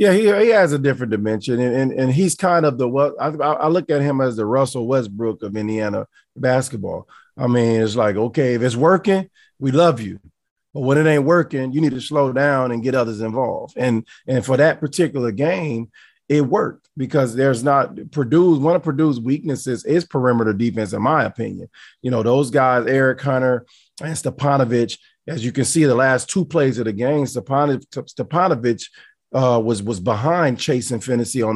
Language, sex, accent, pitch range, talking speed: English, male, American, 120-145 Hz, 200 wpm